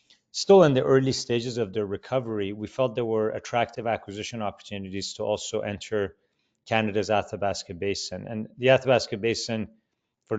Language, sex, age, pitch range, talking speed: English, male, 30-49, 100-115 Hz, 150 wpm